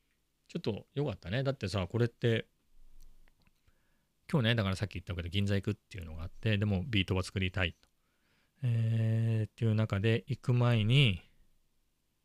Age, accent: 40-59, native